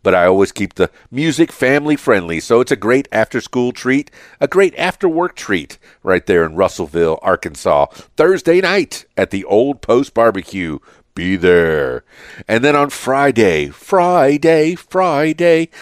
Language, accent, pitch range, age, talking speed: English, American, 95-140 Hz, 50-69, 145 wpm